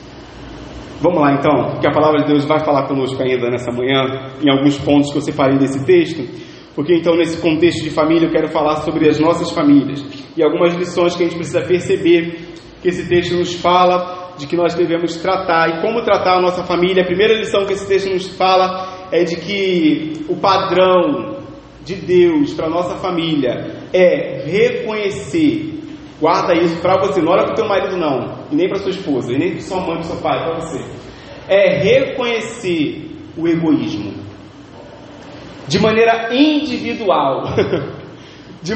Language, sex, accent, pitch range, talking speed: Portuguese, male, Brazilian, 165-235 Hz, 180 wpm